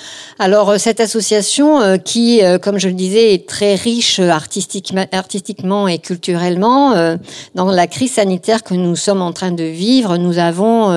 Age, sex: 60-79, female